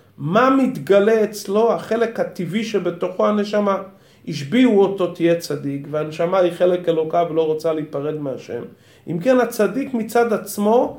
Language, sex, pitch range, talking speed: Hebrew, male, 175-235 Hz, 130 wpm